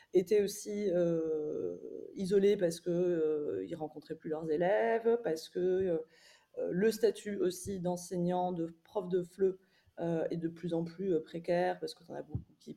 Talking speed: 165 wpm